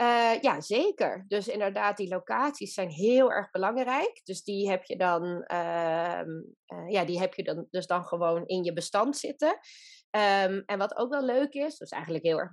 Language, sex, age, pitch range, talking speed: Dutch, female, 20-39, 180-245 Hz, 200 wpm